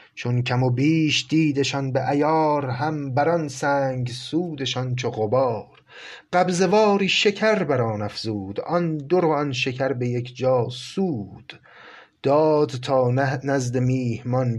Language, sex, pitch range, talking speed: Persian, male, 115-150 Hz, 140 wpm